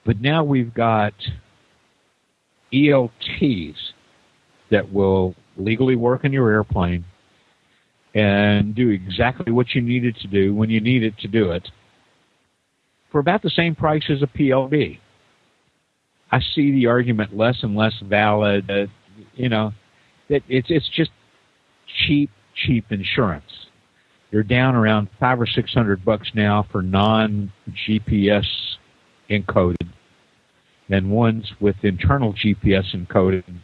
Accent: American